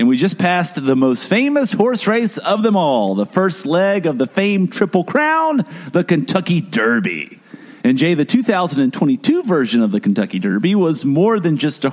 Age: 50-69